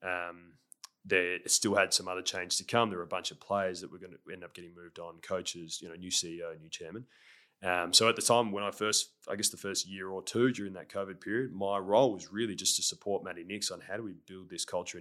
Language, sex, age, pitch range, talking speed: English, male, 20-39, 85-105 Hz, 265 wpm